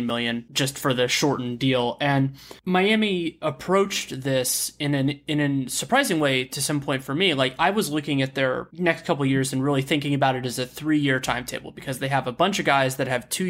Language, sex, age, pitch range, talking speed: English, male, 20-39, 130-160 Hz, 220 wpm